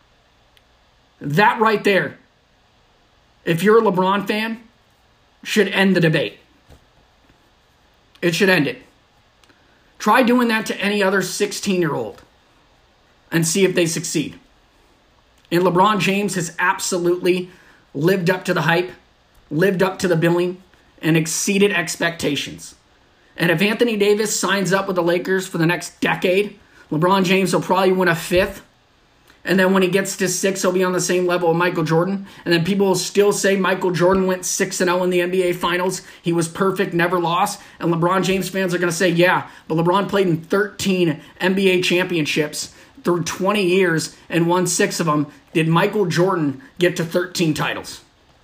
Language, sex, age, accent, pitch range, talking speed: English, male, 40-59, American, 170-195 Hz, 165 wpm